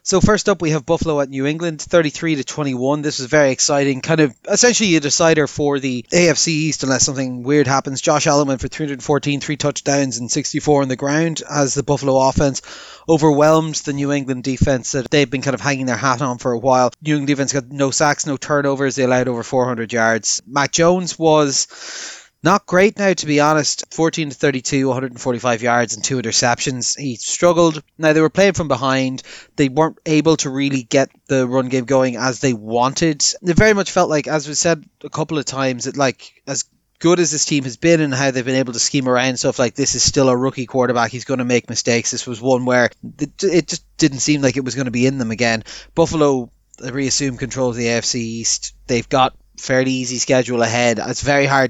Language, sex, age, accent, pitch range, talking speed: English, male, 30-49, Irish, 125-150 Hz, 220 wpm